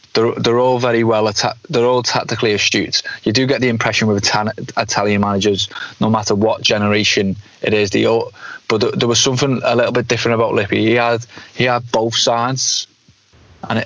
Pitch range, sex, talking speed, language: 105-120 Hz, male, 175 wpm, English